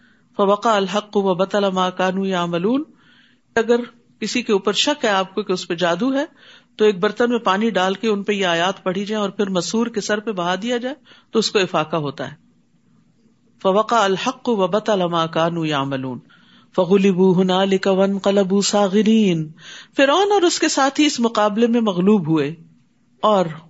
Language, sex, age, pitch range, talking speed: Urdu, female, 50-69, 185-265 Hz, 110 wpm